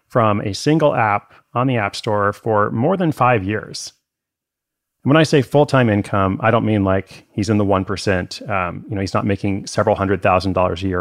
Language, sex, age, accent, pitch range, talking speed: English, male, 30-49, American, 95-120 Hz, 215 wpm